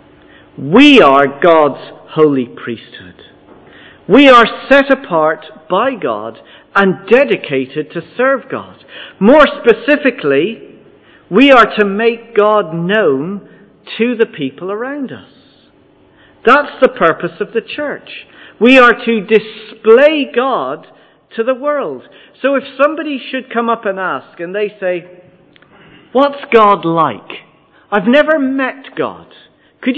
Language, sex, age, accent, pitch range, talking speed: English, male, 50-69, British, 195-265 Hz, 125 wpm